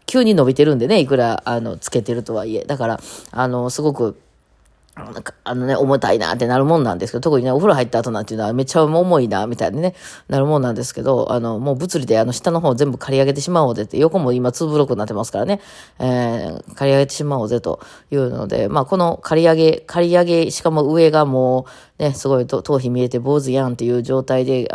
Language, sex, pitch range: Japanese, female, 120-160 Hz